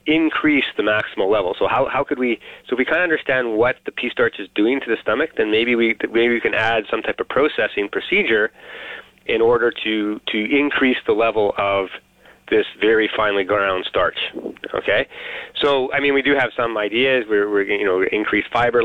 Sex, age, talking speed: male, 30-49, 205 wpm